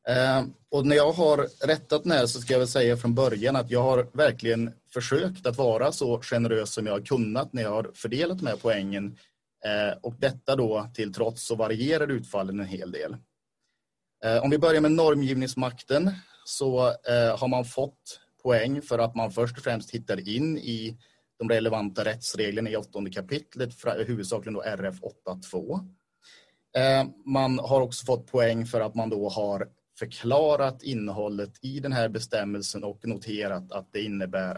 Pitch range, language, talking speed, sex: 110-135 Hz, Swedish, 160 wpm, male